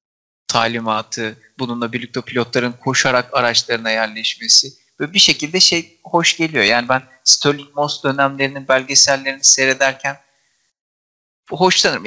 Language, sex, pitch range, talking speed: Turkish, male, 130-160 Hz, 105 wpm